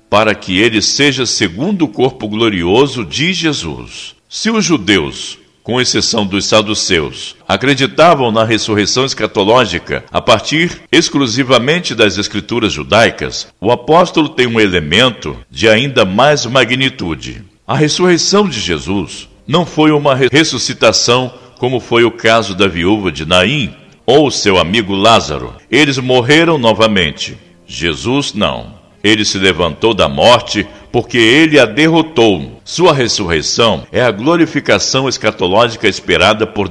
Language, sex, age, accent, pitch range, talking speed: Portuguese, male, 60-79, Brazilian, 105-135 Hz, 125 wpm